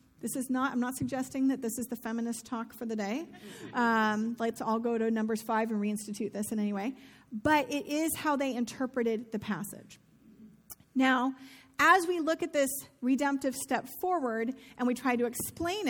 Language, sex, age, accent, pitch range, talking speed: English, female, 40-59, American, 240-290 Hz, 190 wpm